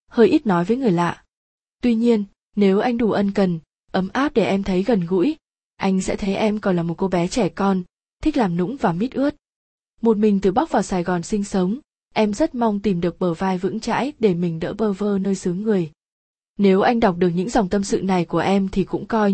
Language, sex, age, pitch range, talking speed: Vietnamese, female, 20-39, 190-225 Hz, 240 wpm